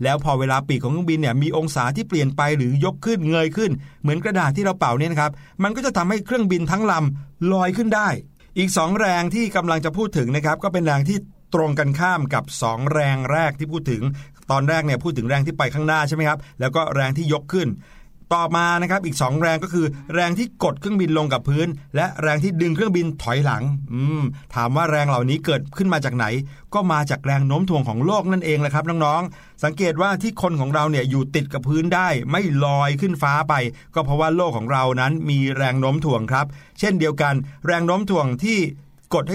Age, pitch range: 60-79, 135-170 Hz